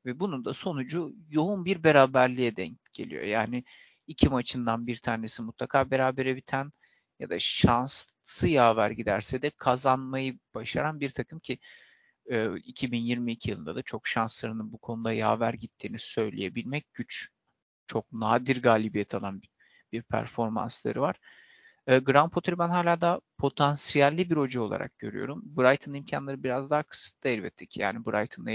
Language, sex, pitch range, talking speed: Turkish, male, 115-140 Hz, 135 wpm